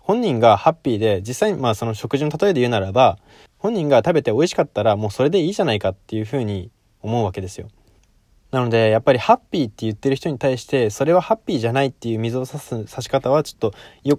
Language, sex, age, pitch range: Japanese, male, 20-39, 105-135 Hz